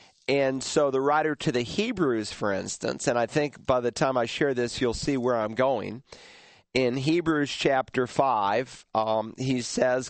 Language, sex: English, male